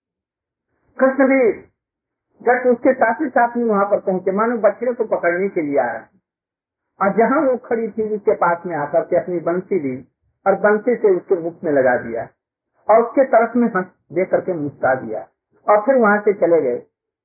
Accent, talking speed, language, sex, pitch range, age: native, 175 wpm, Hindi, male, 190-255 Hz, 50-69